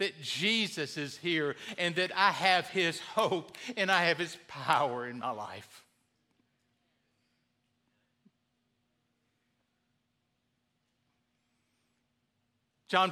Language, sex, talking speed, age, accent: English, male, 85 wpm, 60-79, American